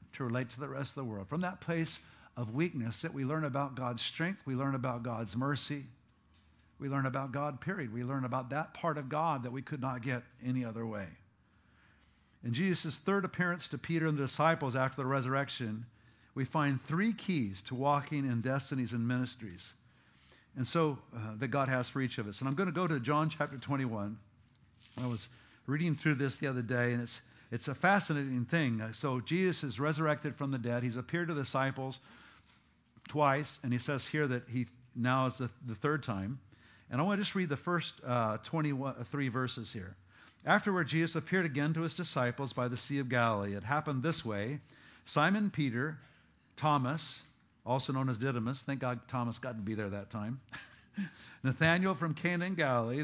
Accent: American